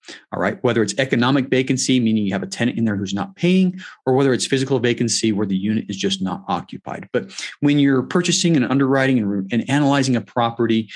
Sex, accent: male, American